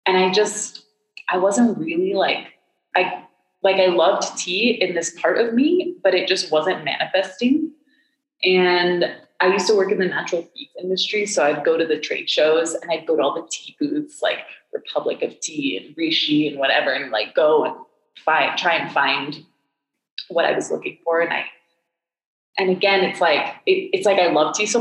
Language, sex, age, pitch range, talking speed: English, female, 20-39, 170-255 Hz, 195 wpm